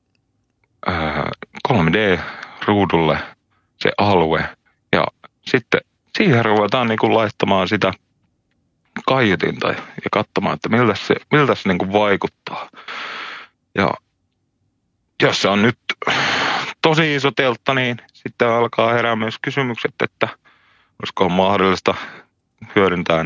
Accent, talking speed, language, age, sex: native, 105 wpm, Finnish, 30-49, male